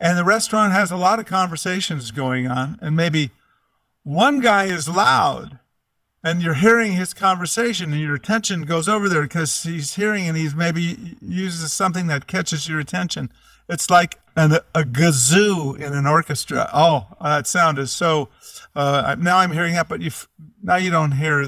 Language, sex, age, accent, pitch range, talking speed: English, male, 50-69, American, 150-190 Hz, 170 wpm